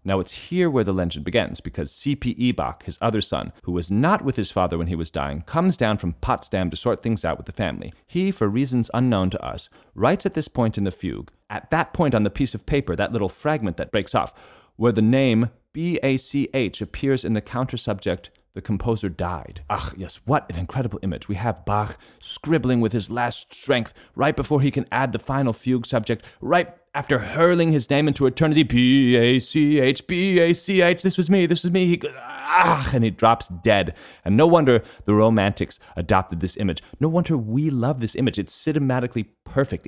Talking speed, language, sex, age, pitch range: 210 wpm, English, male, 30-49, 95-140 Hz